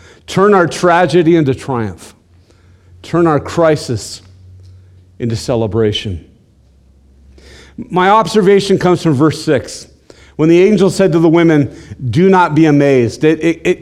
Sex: male